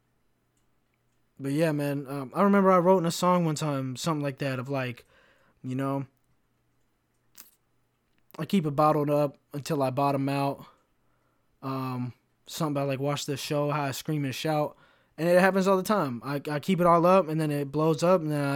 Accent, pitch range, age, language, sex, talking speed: American, 135-160 Hz, 20-39, English, male, 195 wpm